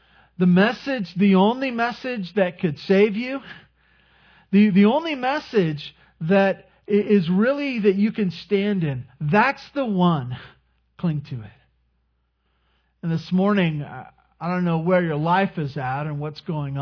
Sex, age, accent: male, 50-69, American